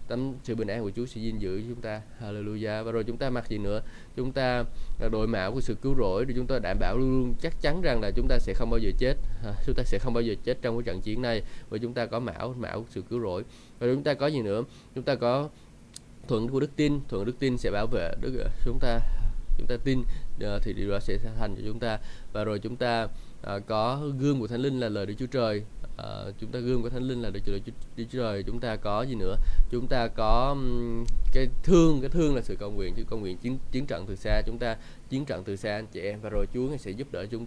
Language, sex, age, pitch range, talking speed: Vietnamese, male, 20-39, 110-130 Hz, 265 wpm